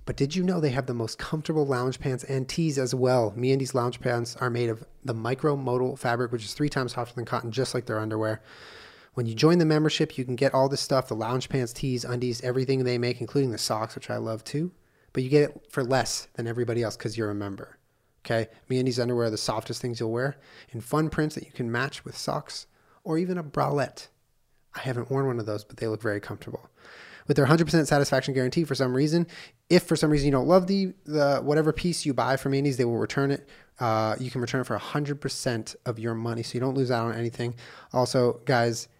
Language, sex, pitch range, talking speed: English, male, 120-145 Hz, 235 wpm